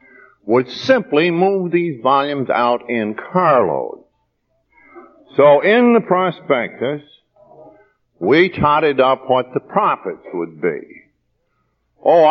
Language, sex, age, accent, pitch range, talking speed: English, male, 60-79, American, 115-165 Hz, 100 wpm